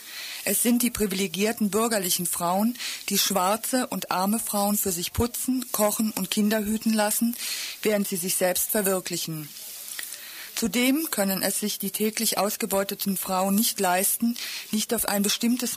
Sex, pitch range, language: female, 190-220 Hz, German